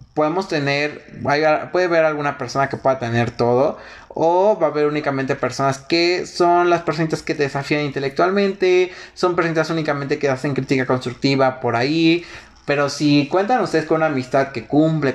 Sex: male